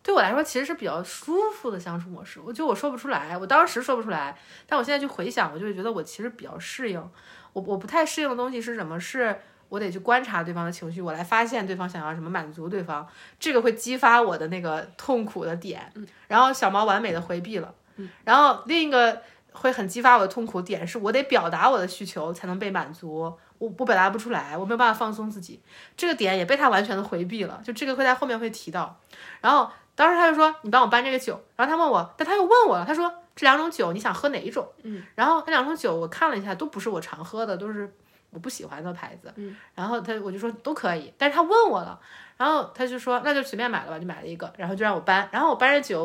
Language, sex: Chinese, female